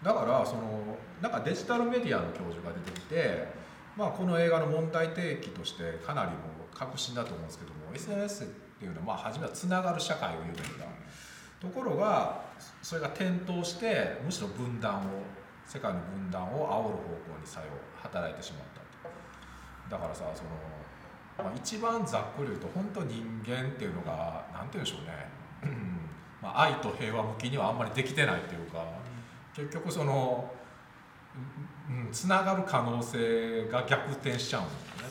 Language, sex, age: Japanese, male, 40-59